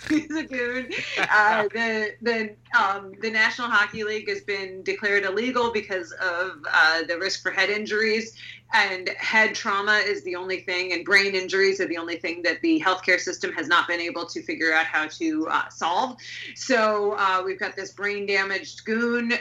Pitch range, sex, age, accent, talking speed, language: 180-225 Hz, female, 30-49, American, 180 wpm, English